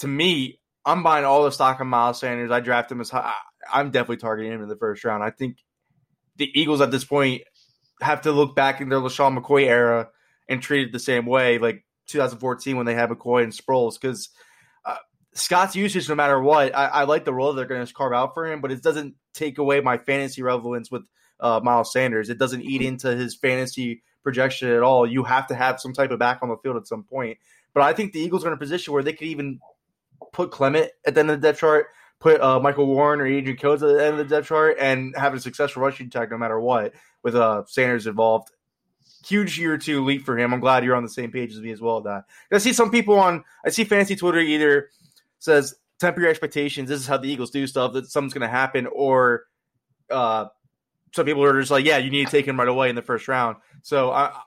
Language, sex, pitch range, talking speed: English, male, 125-150 Hz, 245 wpm